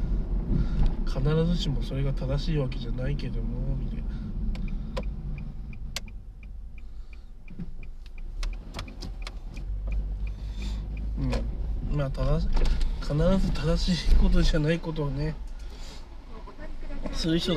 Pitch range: 115-160 Hz